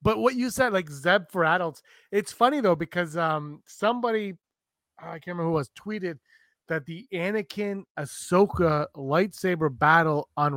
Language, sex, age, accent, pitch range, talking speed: English, male, 30-49, American, 150-210 Hz, 155 wpm